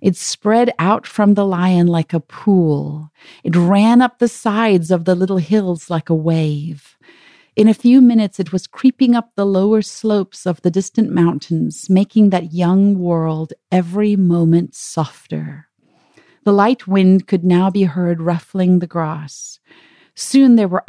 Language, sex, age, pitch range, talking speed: English, female, 40-59, 175-235 Hz, 160 wpm